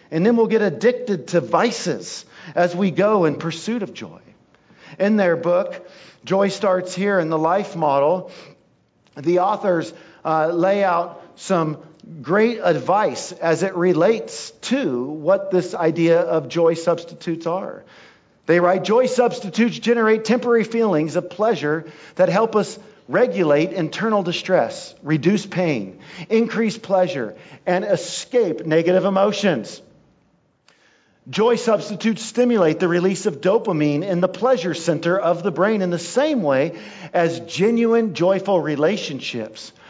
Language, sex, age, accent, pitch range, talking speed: English, male, 50-69, American, 170-210 Hz, 130 wpm